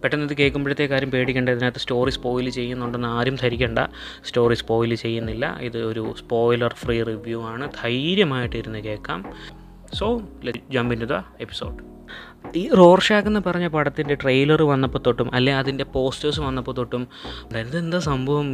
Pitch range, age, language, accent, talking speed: 120-155 Hz, 20-39, Malayalam, native, 135 wpm